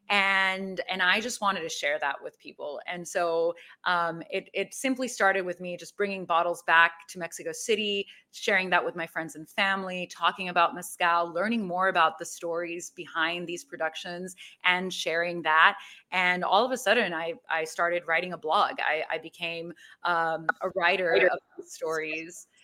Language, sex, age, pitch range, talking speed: English, female, 30-49, 165-185 Hz, 175 wpm